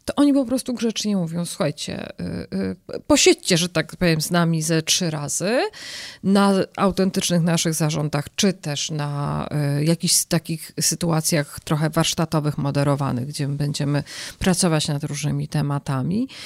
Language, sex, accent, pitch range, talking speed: Polish, female, native, 155-210 Hz, 145 wpm